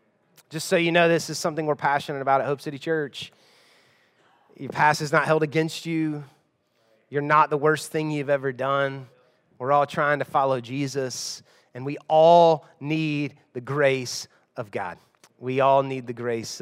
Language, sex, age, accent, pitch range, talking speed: English, male, 30-49, American, 145-185 Hz, 175 wpm